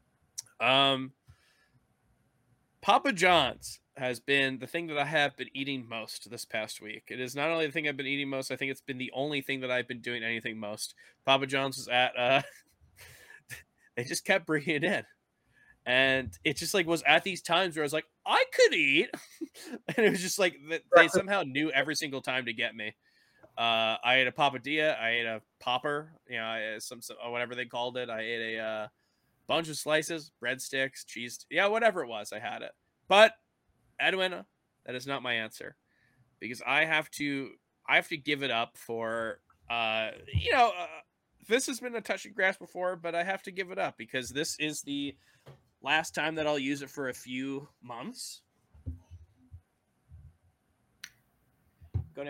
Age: 20-39